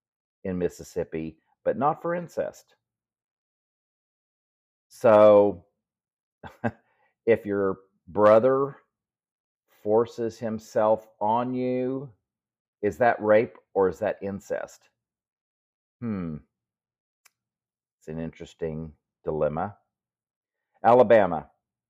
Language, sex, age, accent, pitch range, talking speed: English, male, 50-69, American, 90-115 Hz, 75 wpm